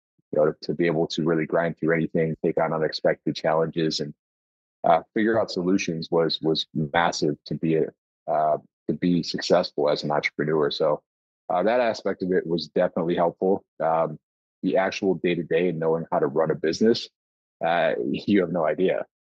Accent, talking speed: American, 185 wpm